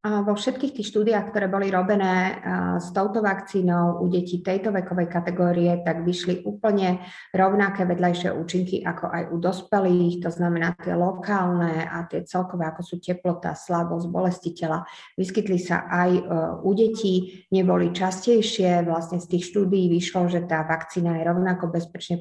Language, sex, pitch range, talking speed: Slovak, female, 170-190 Hz, 155 wpm